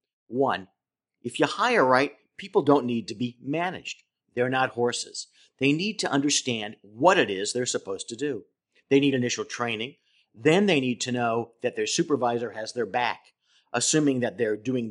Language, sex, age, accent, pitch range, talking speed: English, male, 50-69, American, 120-165 Hz, 175 wpm